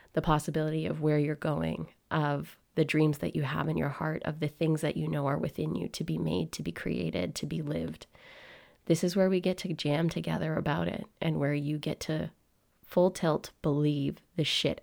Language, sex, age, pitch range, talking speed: English, female, 20-39, 150-170 Hz, 215 wpm